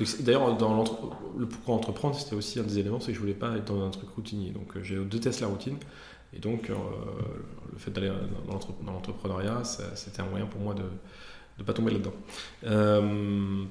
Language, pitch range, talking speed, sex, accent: French, 100-115 Hz, 215 wpm, male, French